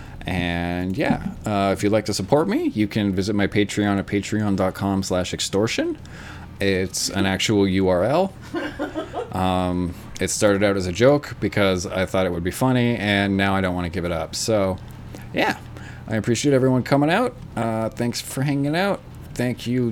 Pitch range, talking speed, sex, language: 100-150 Hz, 180 wpm, male, English